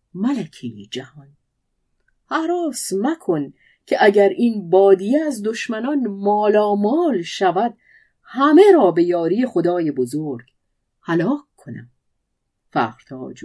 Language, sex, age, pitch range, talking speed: Persian, female, 50-69, 150-210 Hz, 95 wpm